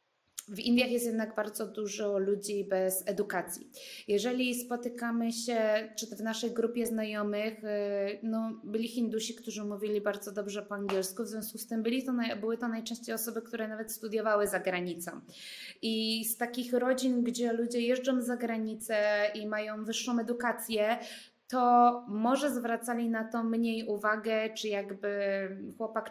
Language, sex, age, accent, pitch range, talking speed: Polish, female, 20-39, native, 215-240 Hz, 150 wpm